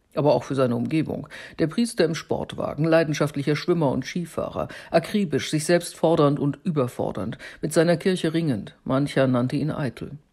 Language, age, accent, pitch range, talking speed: German, 50-69, German, 135-165 Hz, 155 wpm